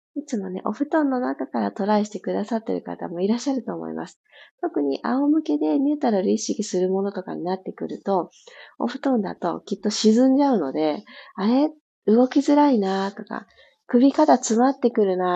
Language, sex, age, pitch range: Japanese, female, 40-59, 185-255 Hz